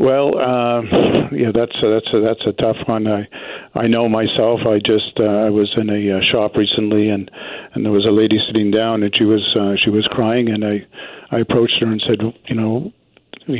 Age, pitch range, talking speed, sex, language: 50-69, 105-115 Hz, 220 wpm, male, English